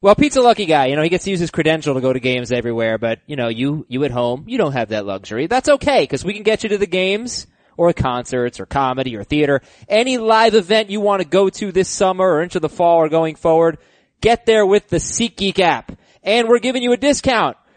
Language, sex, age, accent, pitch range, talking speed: English, male, 20-39, American, 160-200 Hz, 255 wpm